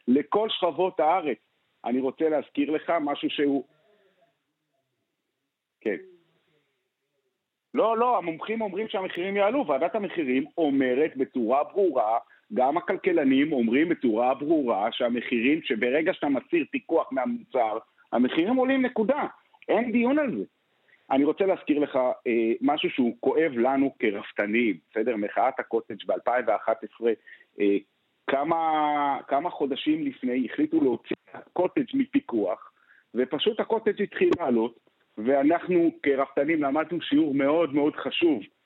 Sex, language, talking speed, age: male, Hebrew, 115 wpm, 50-69